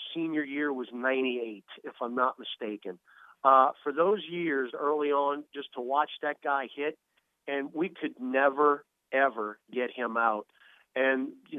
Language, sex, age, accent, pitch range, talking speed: English, male, 40-59, American, 120-145 Hz, 155 wpm